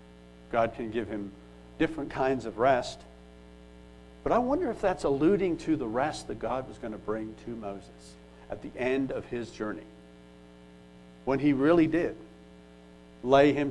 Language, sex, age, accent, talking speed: English, male, 60-79, American, 160 wpm